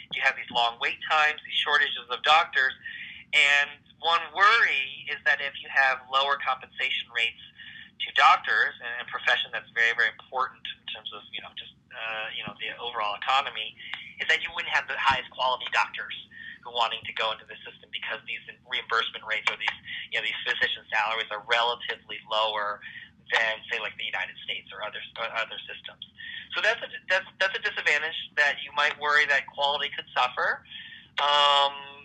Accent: American